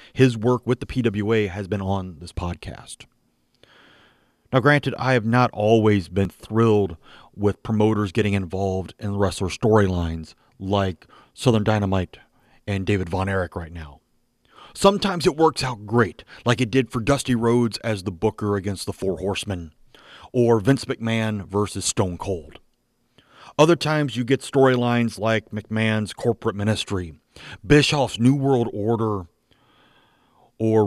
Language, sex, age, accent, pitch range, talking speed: English, male, 30-49, American, 100-125 Hz, 140 wpm